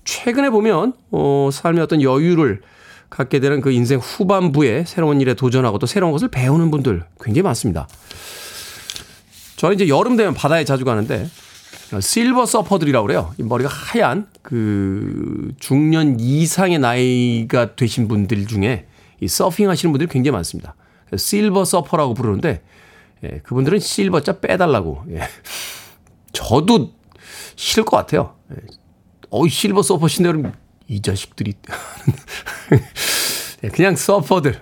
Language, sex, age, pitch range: Korean, male, 40-59, 120-170 Hz